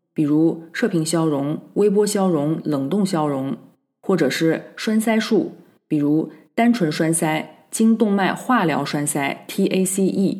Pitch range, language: 160-190 Hz, Chinese